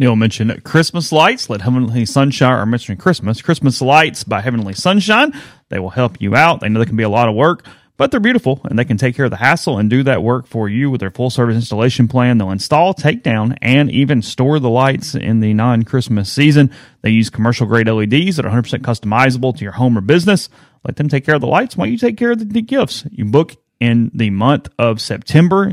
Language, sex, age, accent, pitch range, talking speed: English, male, 30-49, American, 115-150 Hz, 240 wpm